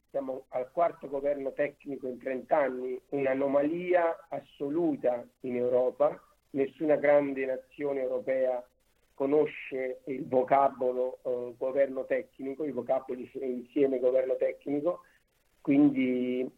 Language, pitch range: Italian, 130-155 Hz